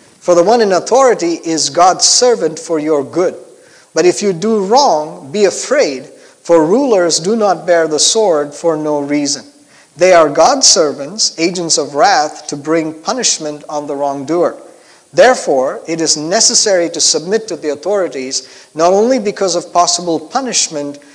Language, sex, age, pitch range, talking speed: English, male, 50-69, 155-205 Hz, 160 wpm